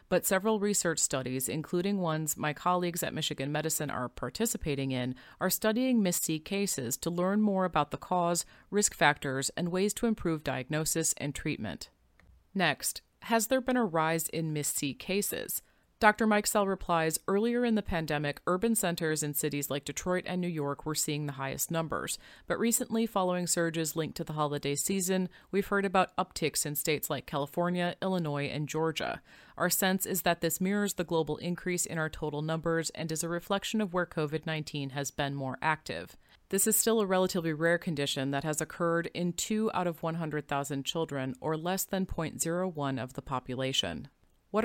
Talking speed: 175 wpm